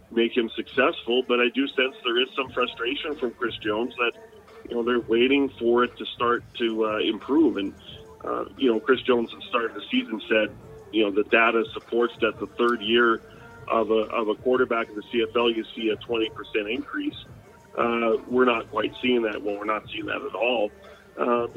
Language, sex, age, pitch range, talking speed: English, male, 40-59, 115-130 Hz, 210 wpm